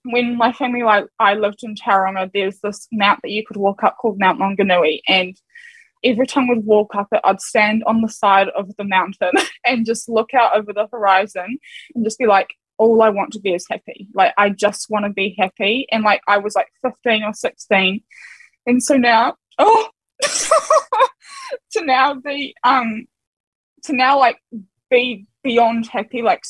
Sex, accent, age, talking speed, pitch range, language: female, Australian, 10-29, 185 wpm, 215-285 Hz, English